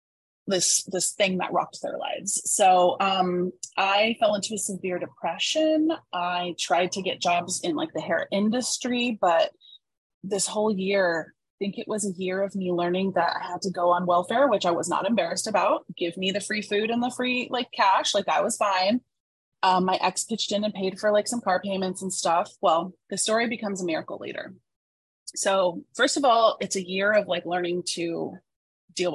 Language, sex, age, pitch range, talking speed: English, female, 20-39, 175-215 Hz, 200 wpm